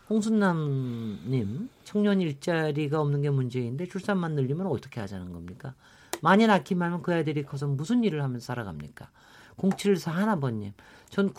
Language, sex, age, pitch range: Korean, male, 50-69, 135-175 Hz